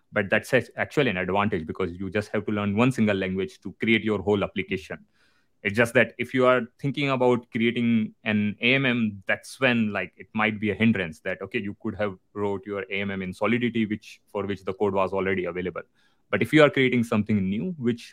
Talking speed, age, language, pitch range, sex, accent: 210 wpm, 30-49, English, 95-115 Hz, male, Indian